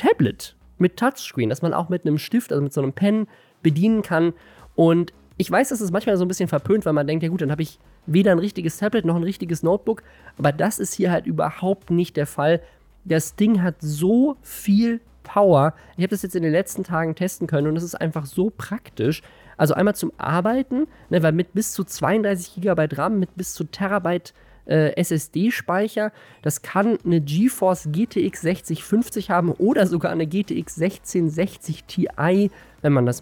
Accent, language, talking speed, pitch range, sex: German, German, 195 wpm, 155-200 Hz, male